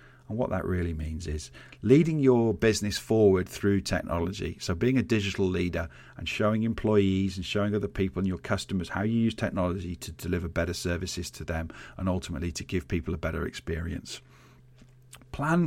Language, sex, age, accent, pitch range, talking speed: English, male, 40-59, British, 95-120 Hz, 175 wpm